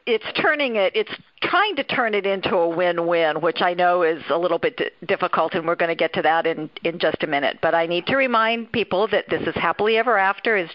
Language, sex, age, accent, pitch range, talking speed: English, female, 50-69, American, 180-250 Hz, 245 wpm